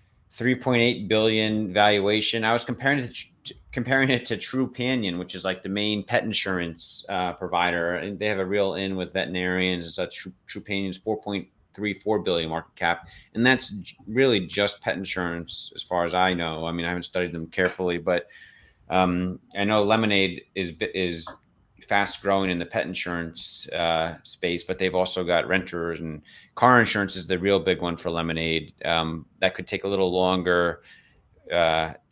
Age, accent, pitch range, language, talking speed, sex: 30-49, American, 85-100 Hz, English, 175 wpm, male